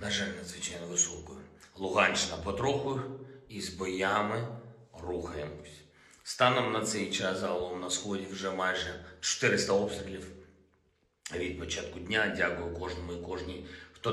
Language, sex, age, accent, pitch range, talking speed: Ukrainian, male, 50-69, native, 90-105 Hz, 125 wpm